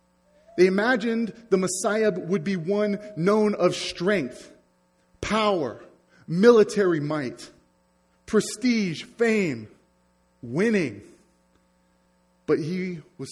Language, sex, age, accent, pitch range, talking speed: English, male, 30-49, American, 145-195 Hz, 85 wpm